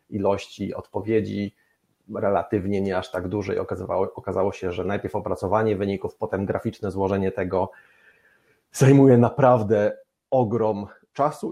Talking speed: 110 wpm